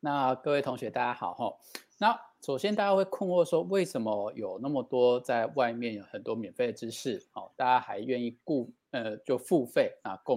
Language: Chinese